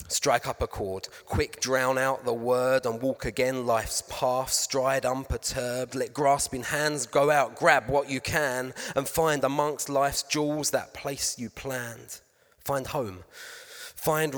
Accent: British